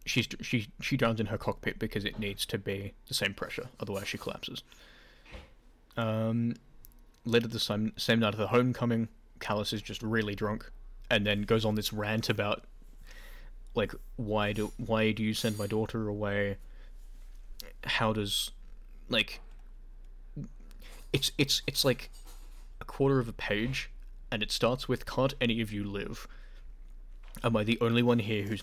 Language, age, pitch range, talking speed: English, 10-29, 105-125 Hz, 165 wpm